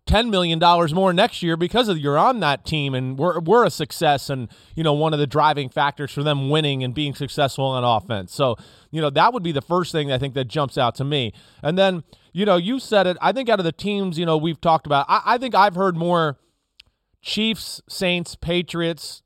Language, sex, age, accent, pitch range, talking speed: English, male, 30-49, American, 135-170 Hz, 235 wpm